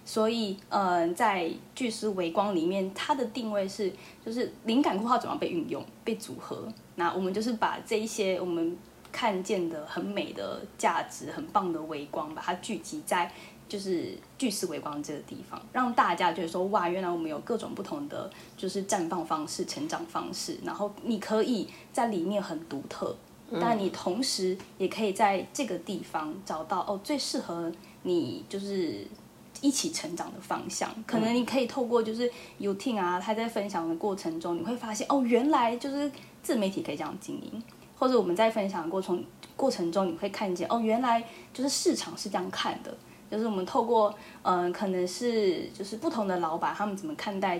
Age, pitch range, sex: 10-29, 185-240 Hz, female